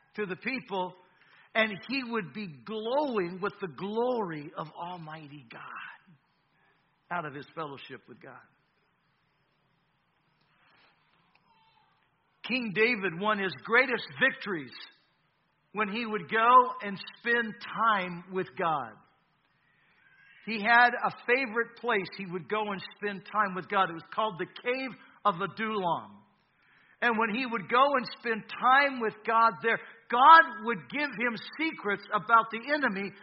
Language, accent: English, American